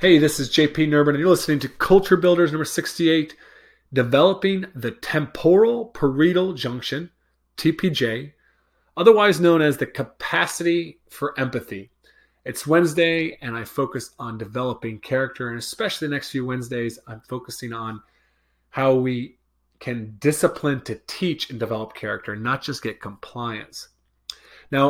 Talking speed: 135 wpm